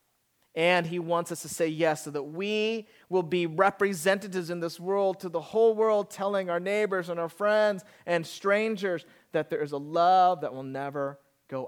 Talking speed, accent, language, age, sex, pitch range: 190 wpm, American, English, 30-49, male, 150-190 Hz